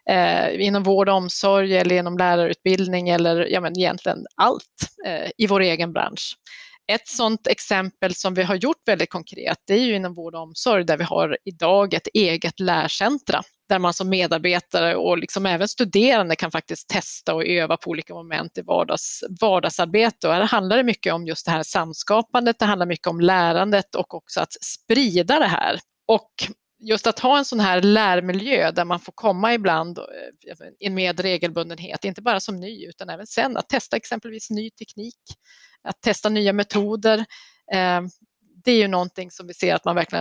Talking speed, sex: 185 wpm, female